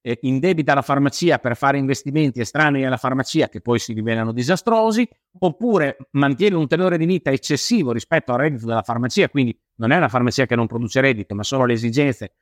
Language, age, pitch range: Italian, 50-69, 115-155 Hz